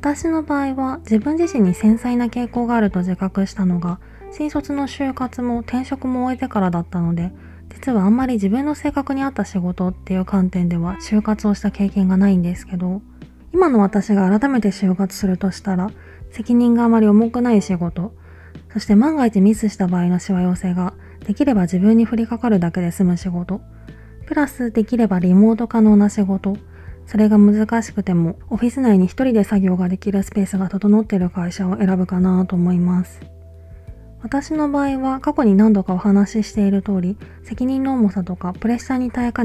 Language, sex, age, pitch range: Japanese, female, 20-39, 185-235 Hz